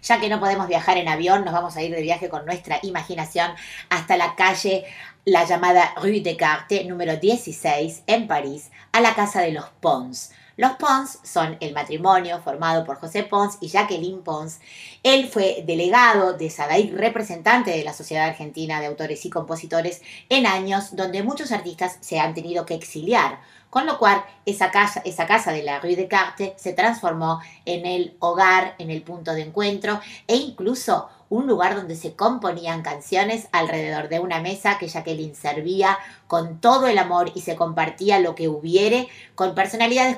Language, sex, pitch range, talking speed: Spanish, female, 160-200 Hz, 175 wpm